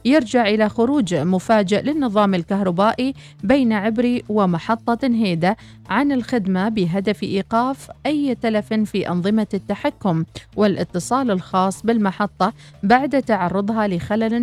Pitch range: 185-240 Hz